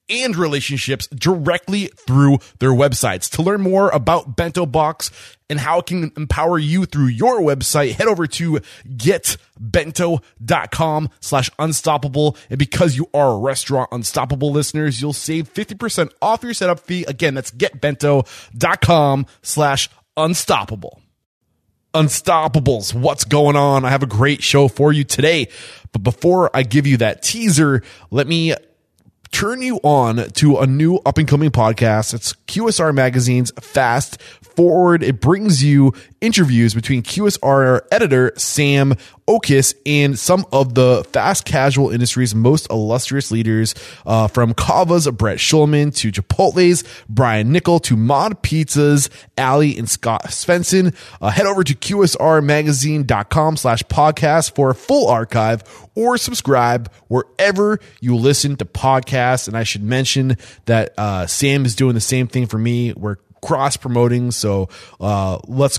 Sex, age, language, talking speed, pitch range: male, 20-39, English, 140 wpm, 120-155 Hz